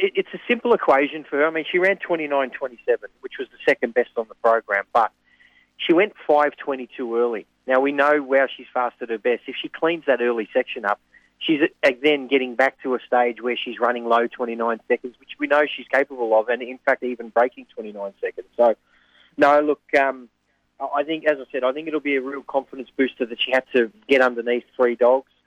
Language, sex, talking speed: English, male, 215 wpm